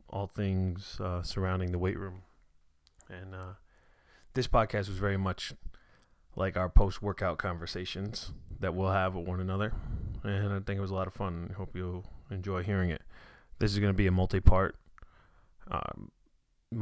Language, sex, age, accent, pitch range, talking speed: English, male, 20-39, American, 90-105 Hz, 170 wpm